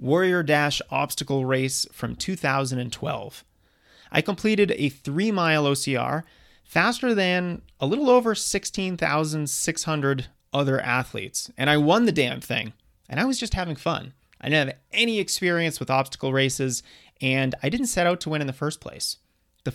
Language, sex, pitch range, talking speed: English, male, 130-170 Hz, 160 wpm